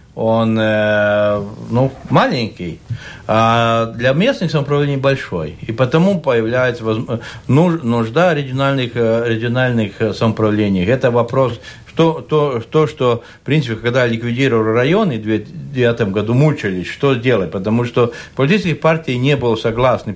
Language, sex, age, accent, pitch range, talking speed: Russian, male, 60-79, native, 110-140 Hz, 120 wpm